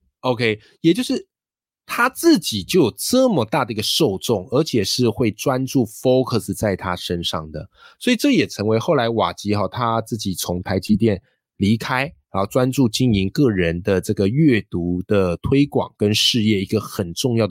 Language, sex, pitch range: Chinese, male, 95-130 Hz